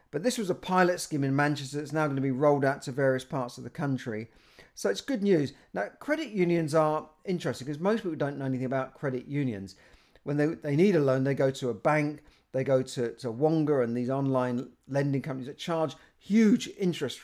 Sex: male